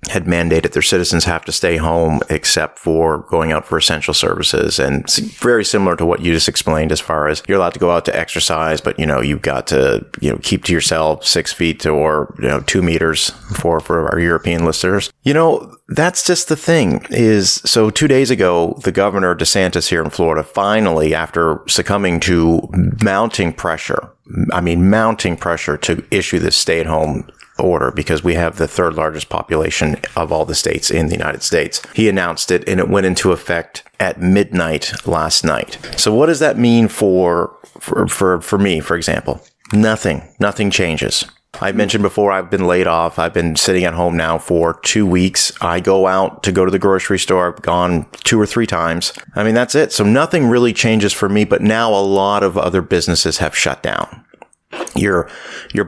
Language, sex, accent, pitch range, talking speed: English, male, American, 85-105 Hz, 195 wpm